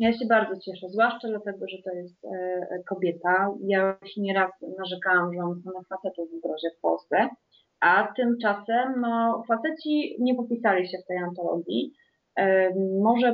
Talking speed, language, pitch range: 155 wpm, Polish, 195-260 Hz